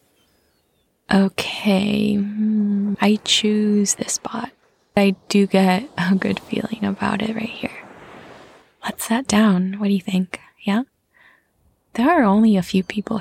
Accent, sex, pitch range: American, female, 195-220 Hz